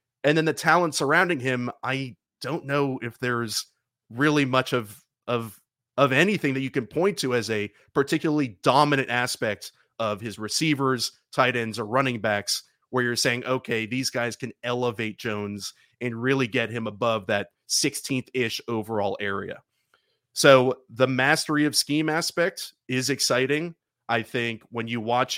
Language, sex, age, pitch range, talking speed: English, male, 30-49, 115-140 Hz, 155 wpm